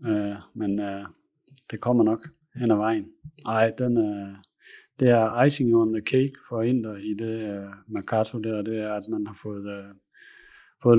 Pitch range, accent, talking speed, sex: 105-115 Hz, native, 180 wpm, male